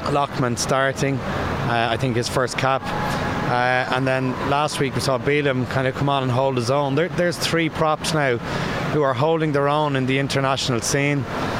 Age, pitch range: 30-49, 125-145 Hz